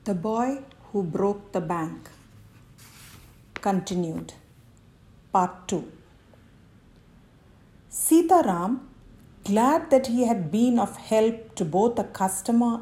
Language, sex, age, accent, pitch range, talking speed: English, female, 50-69, Indian, 185-260 Hz, 105 wpm